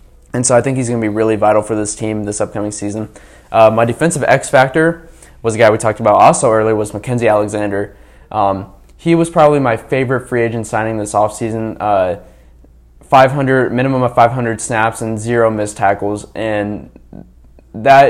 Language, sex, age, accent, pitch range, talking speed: English, male, 20-39, American, 105-120 Hz, 175 wpm